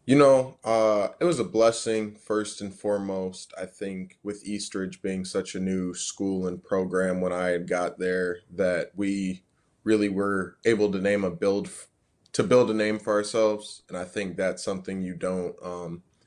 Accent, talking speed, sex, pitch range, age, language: American, 180 wpm, male, 95-105 Hz, 20-39, English